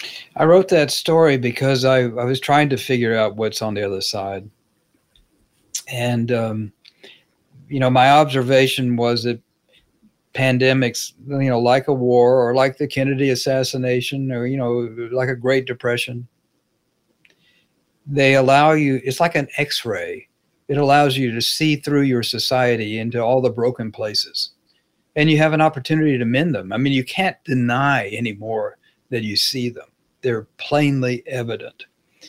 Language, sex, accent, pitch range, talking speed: English, male, American, 120-140 Hz, 155 wpm